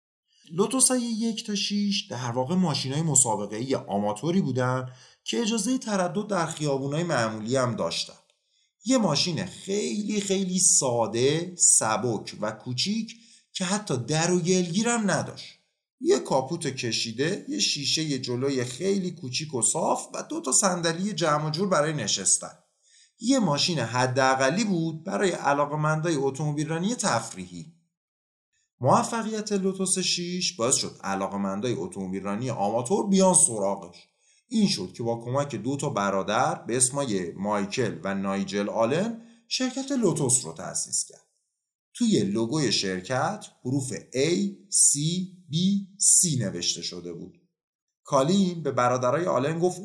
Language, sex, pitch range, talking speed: Persian, male, 125-195 Hz, 130 wpm